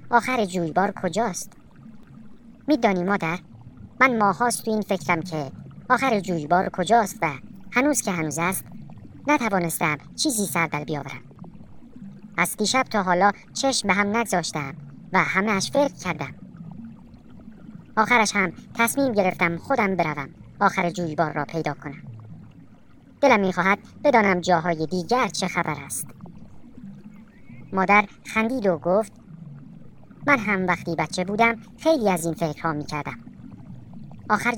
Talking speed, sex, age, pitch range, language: 120 wpm, male, 50-69, 170-225 Hz, Persian